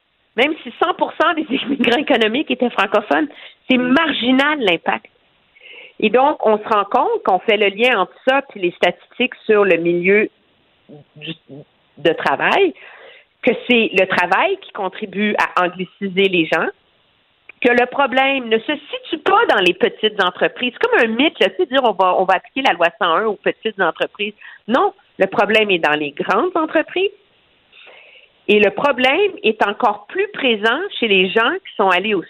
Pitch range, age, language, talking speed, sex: 195-315 Hz, 50-69, French, 170 wpm, female